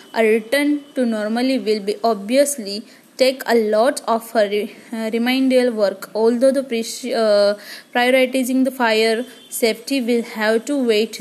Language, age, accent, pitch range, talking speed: Hindi, 20-39, native, 225-275 Hz, 130 wpm